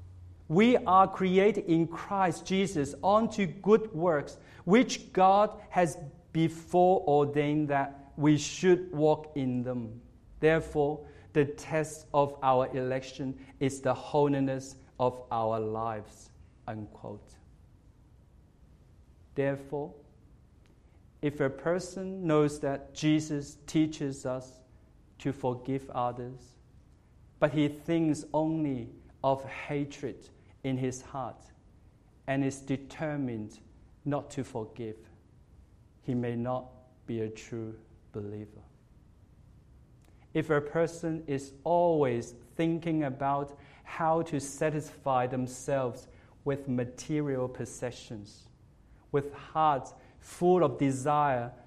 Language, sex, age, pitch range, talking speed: English, male, 50-69, 120-150 Hz, 100 wpm